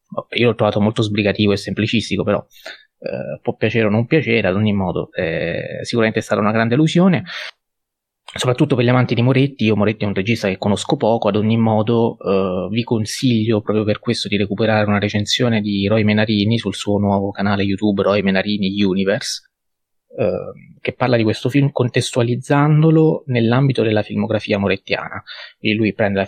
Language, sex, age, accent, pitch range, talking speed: Italian, male, 20-39, native, 105-130 Hz, 175 wpm